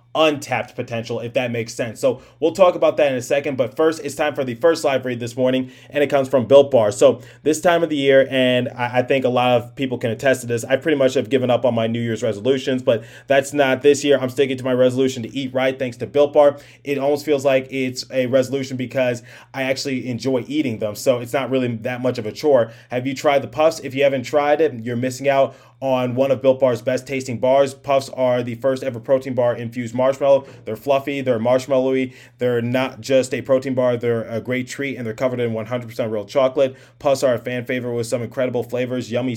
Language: English